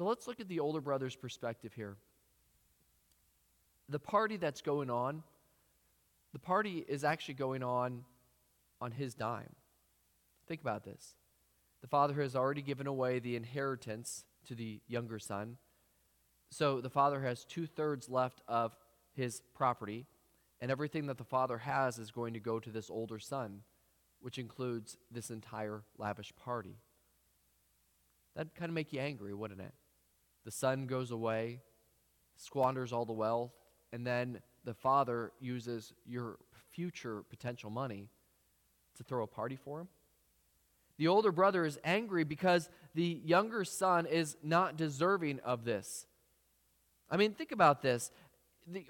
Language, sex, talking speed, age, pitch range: English, male, 145 wpm, 20-39, 105-155 Hz